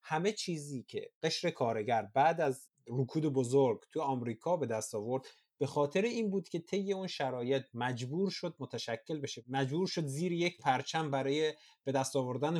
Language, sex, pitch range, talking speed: Persian, male, 120-160 Hz, 165 wpm